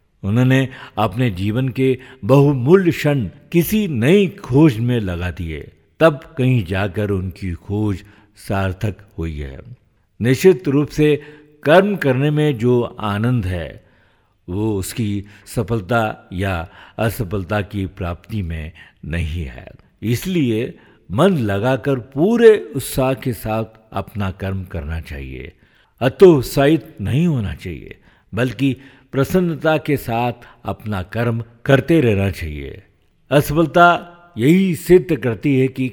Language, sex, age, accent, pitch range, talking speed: Hindi, male, 60-79, native, 95-140 Hz, 115 wpm